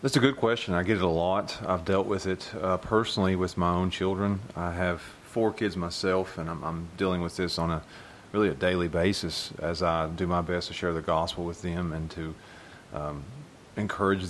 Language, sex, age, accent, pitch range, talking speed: English, male, 30-49, American, 85-100 Hz, 215 wpm